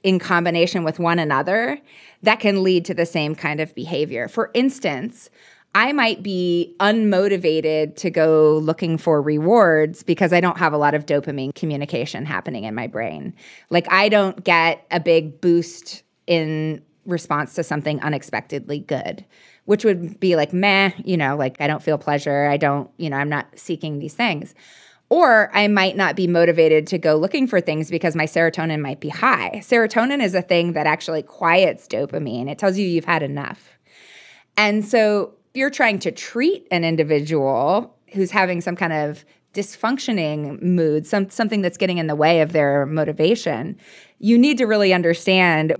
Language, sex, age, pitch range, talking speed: English, female, 20-39, 155-195 Hz, 175 wpm